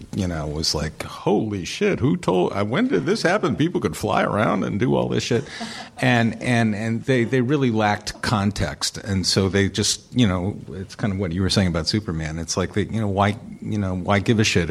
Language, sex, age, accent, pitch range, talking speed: English, male, 50-69, American, 90-115 Hz, 235 wpm